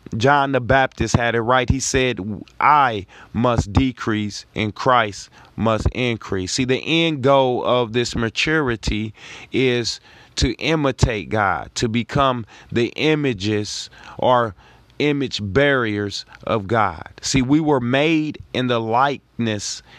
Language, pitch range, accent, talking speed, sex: English, 110-135 Hz, American, 125 wpm, male